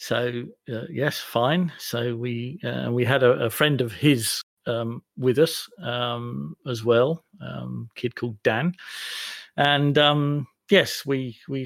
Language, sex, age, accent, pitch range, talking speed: English, male, 50-69, British, 120-135 Hz, 150 wpm